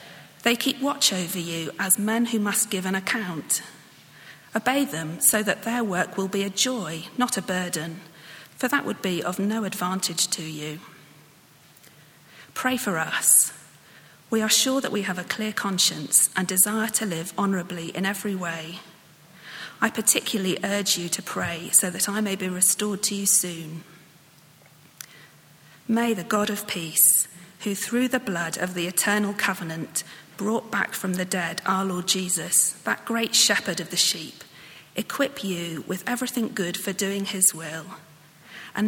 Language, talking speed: English, 165 wpm